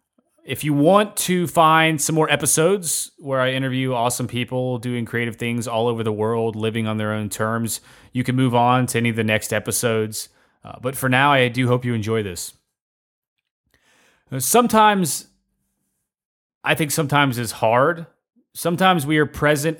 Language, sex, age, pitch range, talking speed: English, male, 30-49, 125-170 Hz, 165 wpm